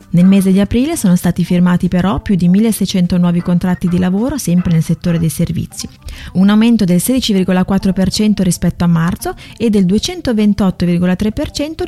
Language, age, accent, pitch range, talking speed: Italian, 30-49, native, 175-220 Hz, 150 wpm